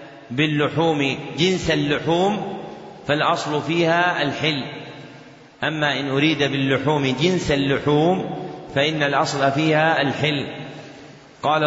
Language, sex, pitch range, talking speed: Arabic, male, 145-160 Hz, 85 wpm